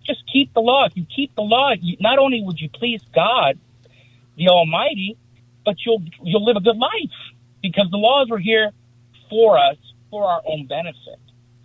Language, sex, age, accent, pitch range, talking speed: English, male, 50-69, American, 125-195 Hz, 180 wpm